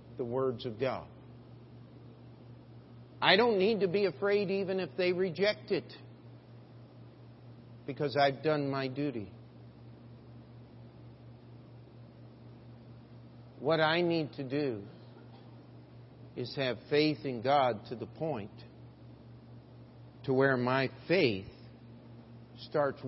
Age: 50-69